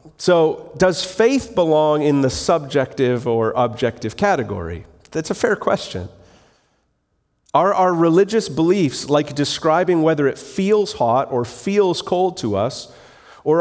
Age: 40-59